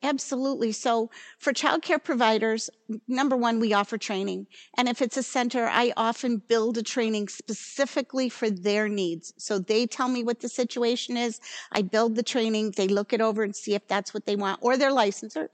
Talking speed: 195 wpm